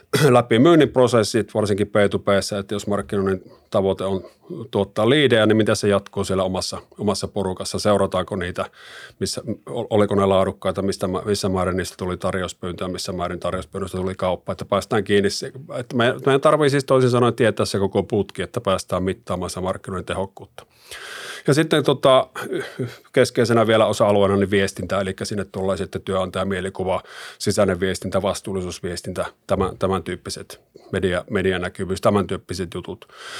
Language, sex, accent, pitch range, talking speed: Finnish, male, native, 95-110 Hz, 145 wpm